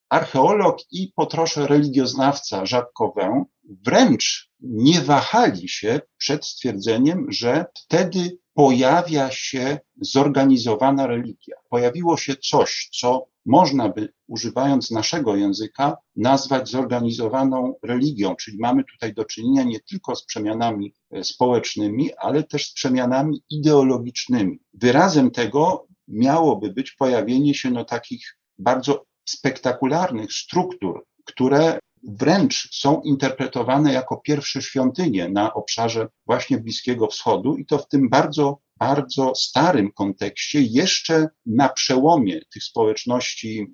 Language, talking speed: Polish, 110 wpm